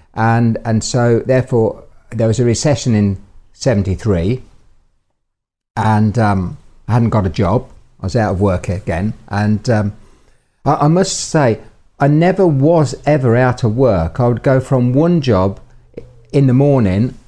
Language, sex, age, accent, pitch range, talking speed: English, male, 50-69, British, 100-125 Hz, 155 wpm